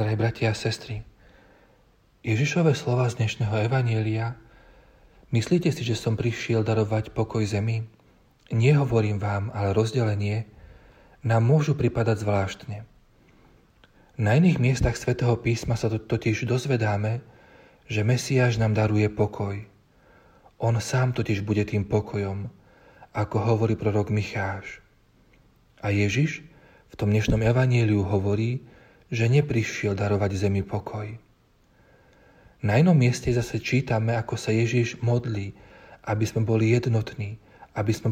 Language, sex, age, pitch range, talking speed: Slovak, male, 40-59, 105-120 Hz, 120 wpm